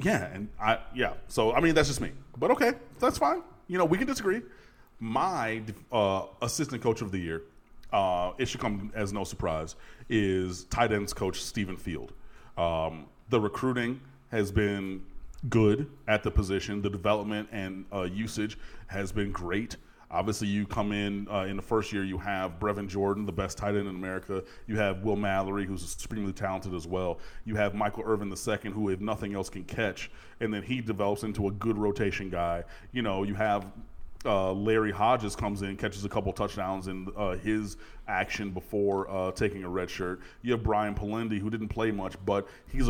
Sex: male